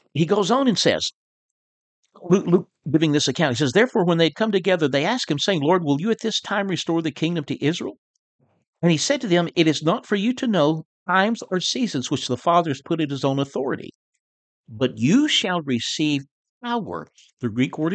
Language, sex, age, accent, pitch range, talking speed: English, male, 60-79, American, 145-215 Hz, 215 wpm